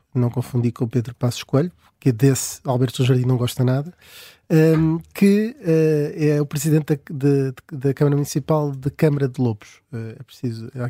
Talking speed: 165 wpm